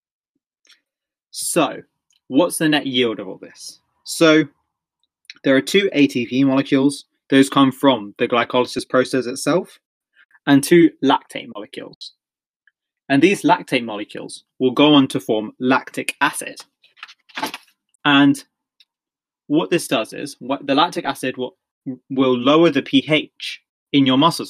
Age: 20-39